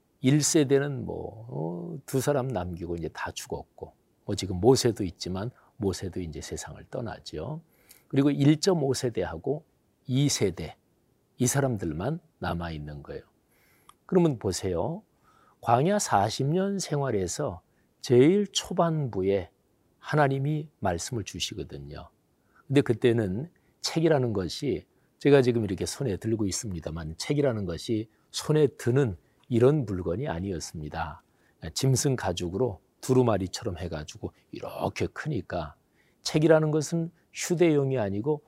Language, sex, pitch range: Korean, male, 95-140 Hz